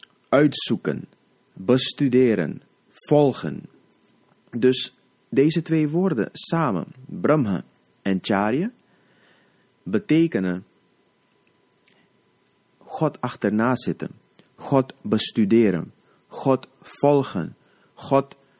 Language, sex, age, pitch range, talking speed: Dutch, male, 30-49, 105-145 Hz, 65 wpm